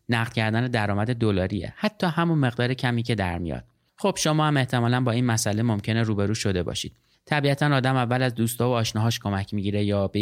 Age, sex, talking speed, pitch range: 30-49, male, 190 wpm, 115-140 Hz